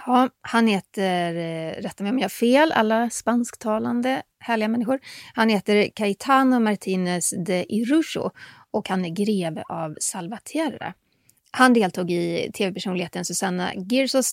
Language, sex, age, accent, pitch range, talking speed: Swedish, female, 30-49, native, 175-240 Hz, 120 wpm